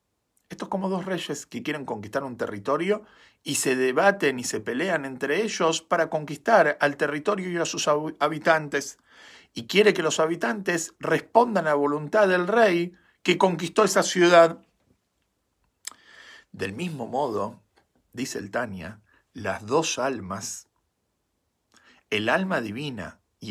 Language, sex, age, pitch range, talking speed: Spanish, male, 50-69, 110-175 Hz, 135 wpm